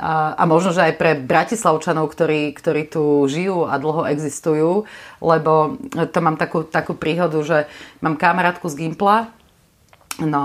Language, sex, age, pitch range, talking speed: Slovak, female, 30-49, 150-180 Hz, 145 wpm